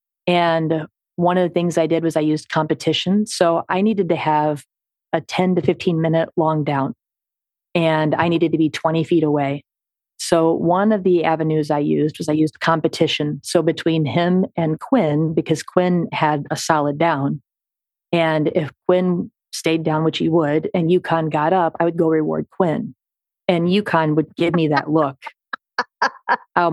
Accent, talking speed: American, 175 wpm